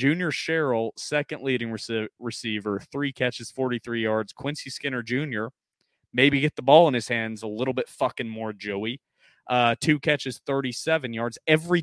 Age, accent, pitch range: 20-39, American, 105-130 Hz